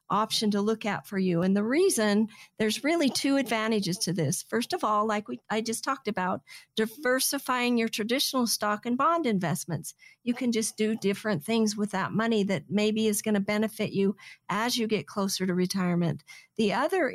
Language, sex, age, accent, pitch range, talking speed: English, female, 50-69, American, 205-245 Hz, 195 wpm